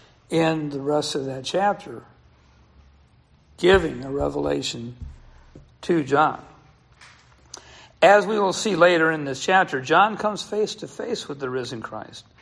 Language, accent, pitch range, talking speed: English, American, 140-190 Hz, 135 wpm